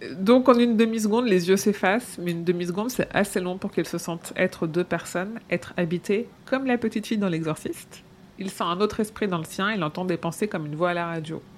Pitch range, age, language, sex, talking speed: 175-210 Hz, 30-49, French, female, 240 wpm